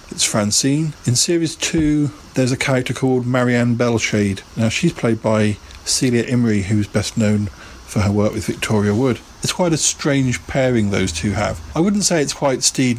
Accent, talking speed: British, 185 wpm